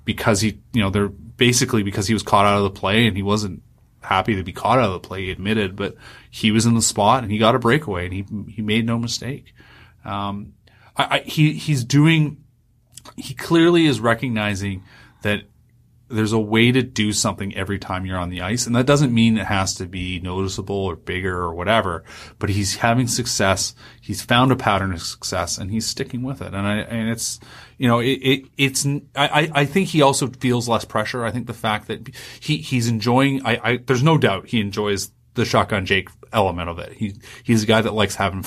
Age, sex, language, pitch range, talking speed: 30-49, male, English, 100-120 Hz, 220 wpm